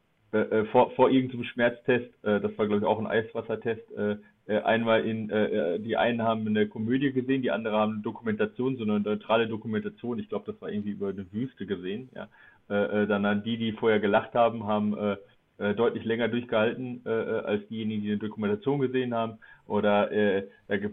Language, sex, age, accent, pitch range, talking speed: German, male, 30-49, German, 110-125 Hz, 190 wpm